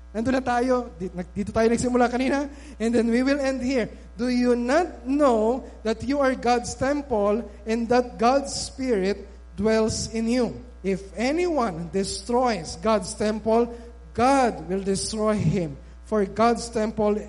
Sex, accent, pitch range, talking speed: male, native, 195-280 Hz, 140 wpm